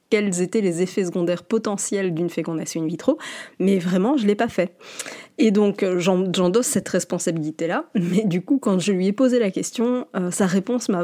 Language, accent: French, French